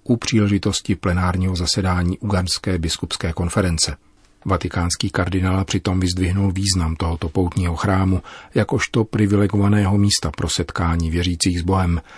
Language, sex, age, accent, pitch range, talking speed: Czech, male, 40-59, native, 90-100 Hz, 115 wpm